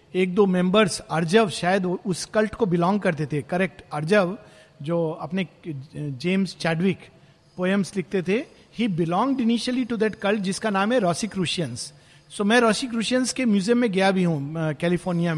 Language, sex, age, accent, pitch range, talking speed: Hindi, male, 50-69, native, 160-225 Hz, 165 wpm